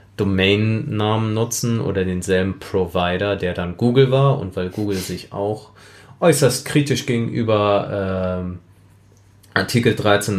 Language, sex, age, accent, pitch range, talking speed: German, male, 30-49, German, 95-105 Hz, 115 wpm